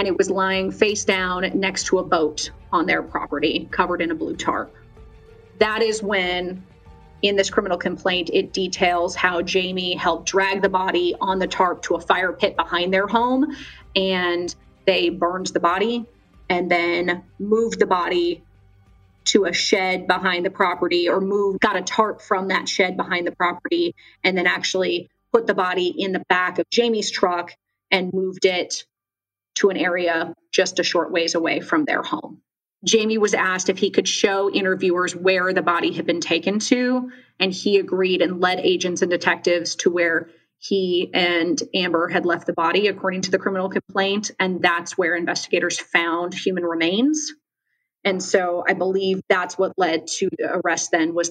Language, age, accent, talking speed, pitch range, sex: English, 30-49, American, 175 wpm, 175-195 Hz, female